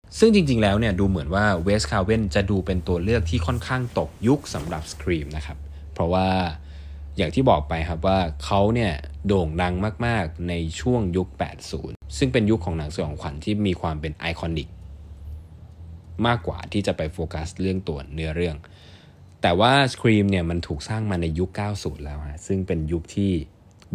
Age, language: 20-39, Thai